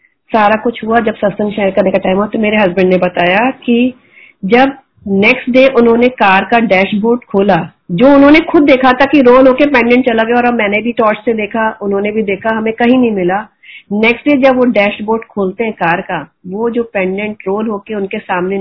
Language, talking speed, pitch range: Hindi, 200 wpm, 200-240 Hz